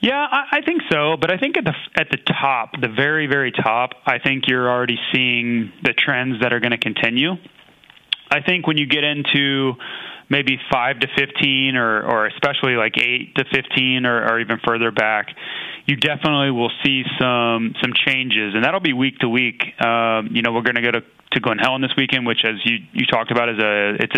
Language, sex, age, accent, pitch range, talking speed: English, male, 30-49, American, 115-140 Hz, 210 wpm